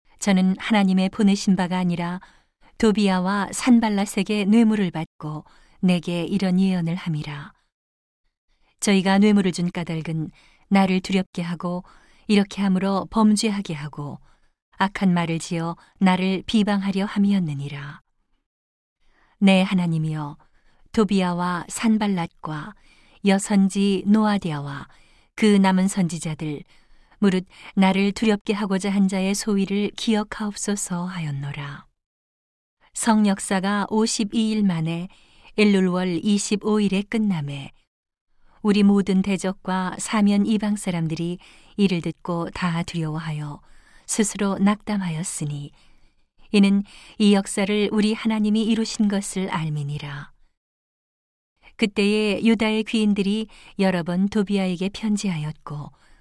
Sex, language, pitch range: female, Korean, 170-205 Hz